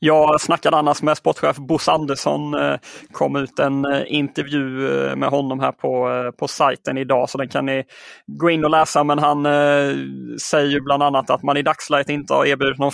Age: 20-39